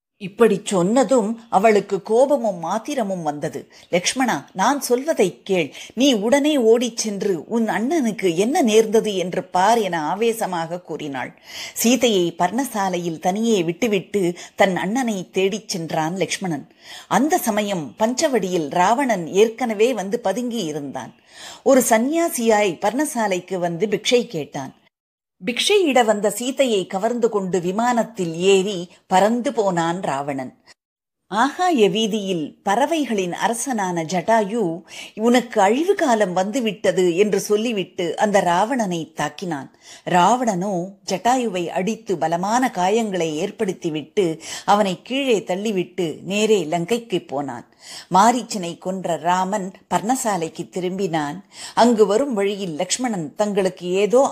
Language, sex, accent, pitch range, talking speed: Tamil, female, native, 175-230 Hz, 105 wpm